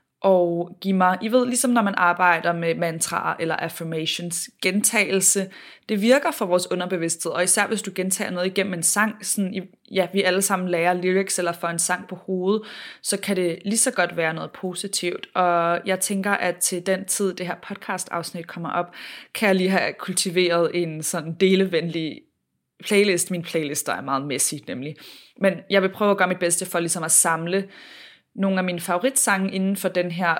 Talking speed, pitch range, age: 195 wpm, 170-195 Hz, 20-39